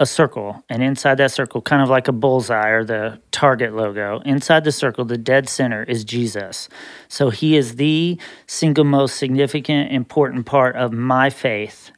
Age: 30-49